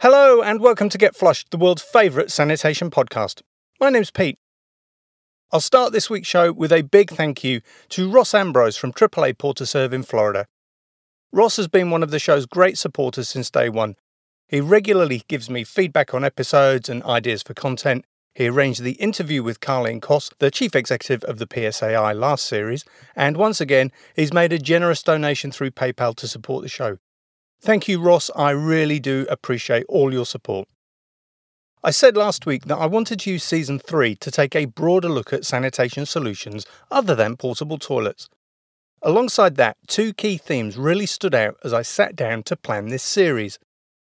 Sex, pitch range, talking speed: male, 125-185 Hz, 180 wpm